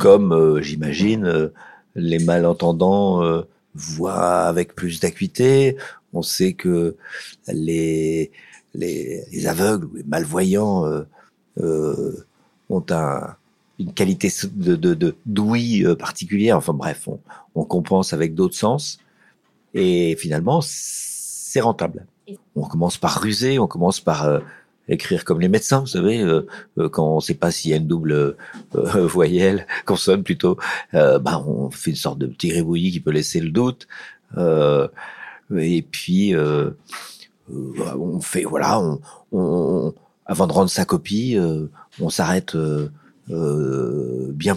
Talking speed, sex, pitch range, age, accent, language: 145 wpm, male, 80-130 Hz, 50-69, French, French